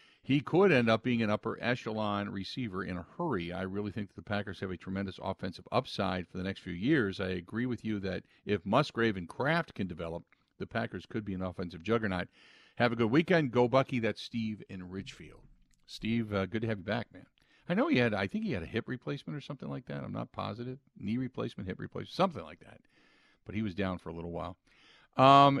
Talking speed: 230 wpm